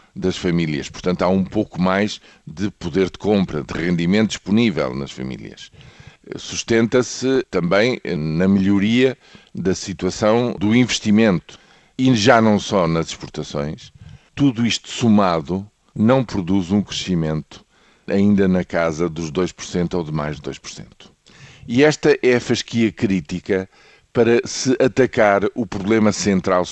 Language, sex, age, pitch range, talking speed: Portuguese, male, 50-69, 90-115 Hz, 135 wpm